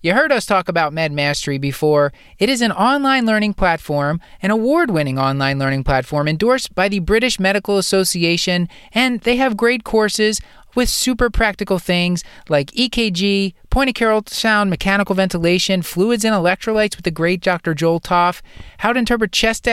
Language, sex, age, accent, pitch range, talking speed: English, male, 30-49, American, 175-235 Hz, 165 wpm